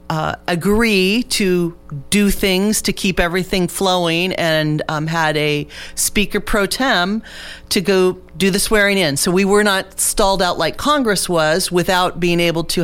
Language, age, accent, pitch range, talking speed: English, 40-59, American, 160-190 Hz, 165 wpm